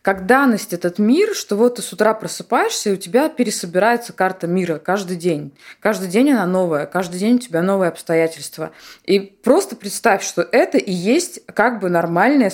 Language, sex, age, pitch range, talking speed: Russian, female, 20-39, 180-255 Hz, 180 wpm